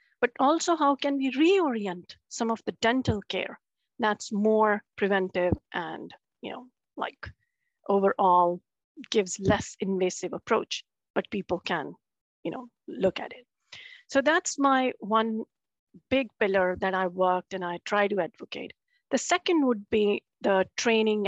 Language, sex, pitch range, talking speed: Swedish, female, 205-275 Hz, 145 wpm